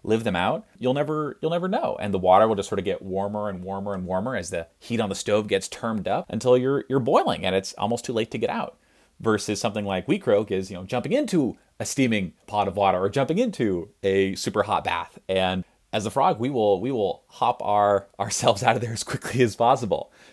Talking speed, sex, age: 240 wpm, male, 30-49